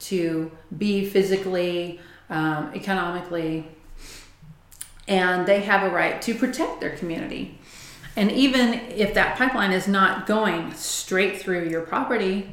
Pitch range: 180-220 Hz